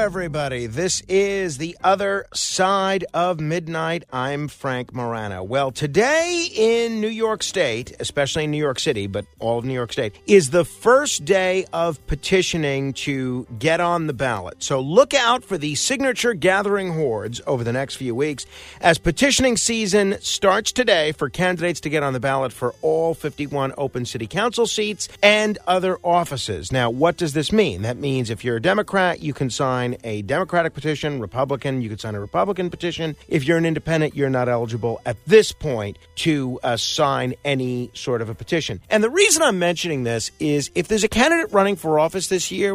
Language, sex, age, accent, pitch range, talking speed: English, male, 50-69, American, 135-190 Hz, 185 wpm